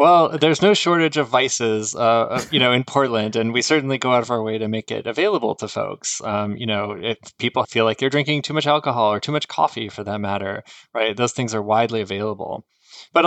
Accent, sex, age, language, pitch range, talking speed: American, male, 20-39, English, 110-135 Hz, 235 wpm